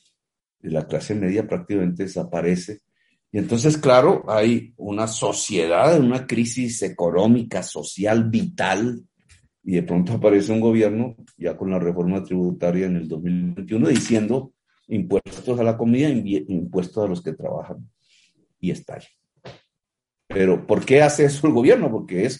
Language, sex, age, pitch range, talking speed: Spanish, male, 50-69, 90-120 Hz, 145 wpm